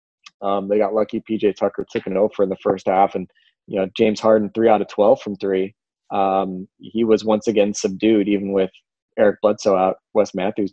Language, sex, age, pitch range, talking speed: English, male, 20-39, 95-110 Hz, 200 wpm